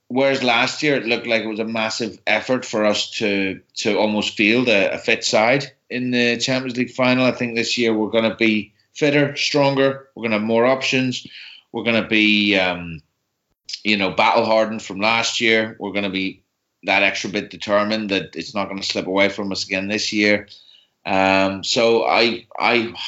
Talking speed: 200 wpm